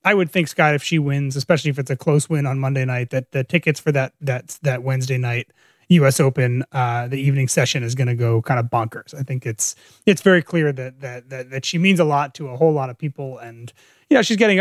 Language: English